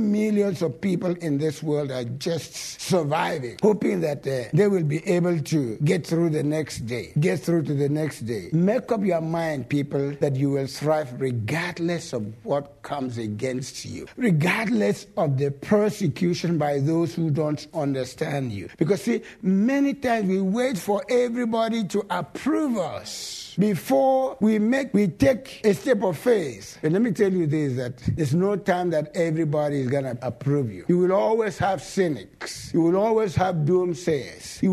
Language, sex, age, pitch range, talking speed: English, male, 60-79, 140-195 Hz, 175 wpm